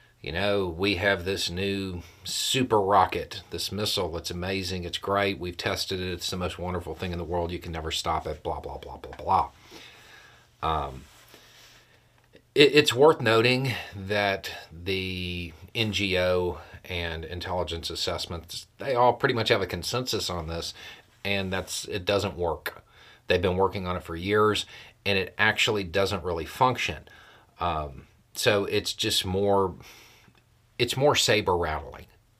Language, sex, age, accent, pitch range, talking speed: English, male, 40-59, American, 90-110 Hz, 150 wpm